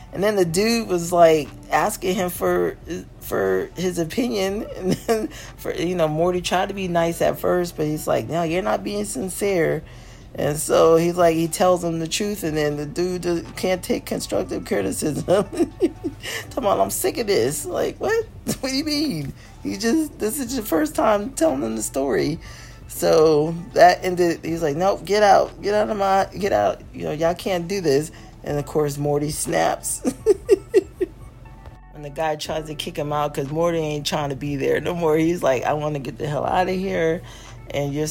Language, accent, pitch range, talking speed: English, American, 155-205 Hz, 200 wpm